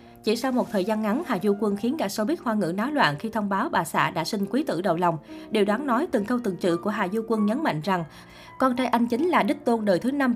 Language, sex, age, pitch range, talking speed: Vietnamese, female, 20-39, 180-235 Hz, 295 wpm